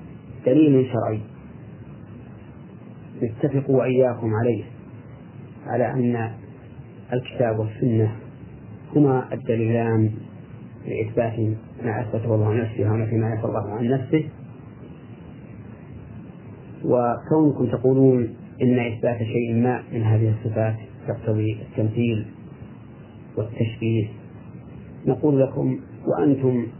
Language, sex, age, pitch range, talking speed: Arabic, male, 40-59, 110-130 Hz, 70 wpm